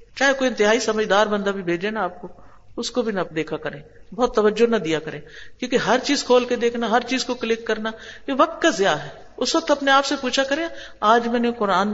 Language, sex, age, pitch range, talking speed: Urdu, female, 50-69, 200-260 Hz, 240 wpm